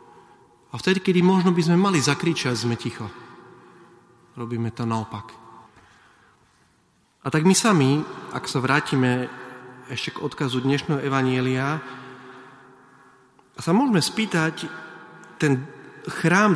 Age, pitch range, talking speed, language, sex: 30-49, 120-175 Hz, 110 wpm, Slovak, male